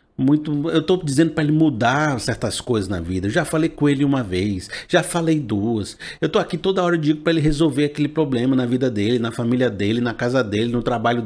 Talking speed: 235 wpm